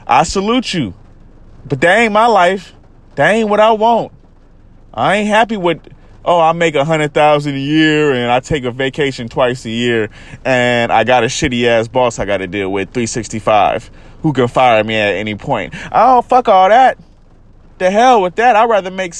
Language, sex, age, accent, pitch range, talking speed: English, male, 20-39, American, 125-190 Hz, 190 wpm